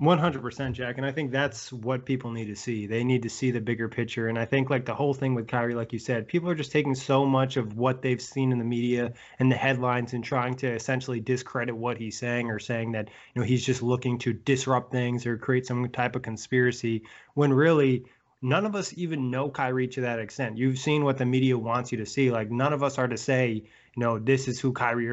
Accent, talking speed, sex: American, 245 wpm, male